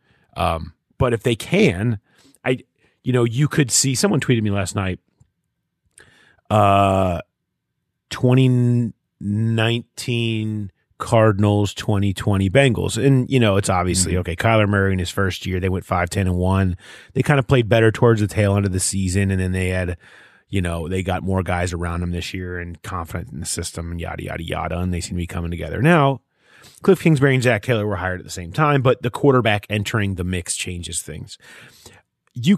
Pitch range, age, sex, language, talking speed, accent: 95-130 Hz, 30-49, male, English, 190 wpm, American